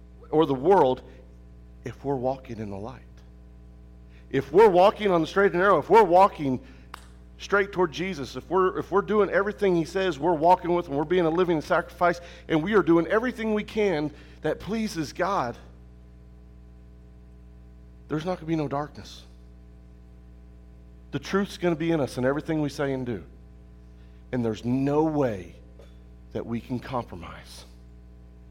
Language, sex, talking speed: English, male, 165 wpm